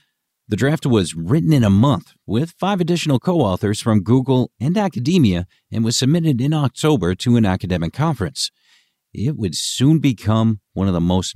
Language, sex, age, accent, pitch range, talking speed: English, male, 50-69, American, 95-130 Hz, 170 wpm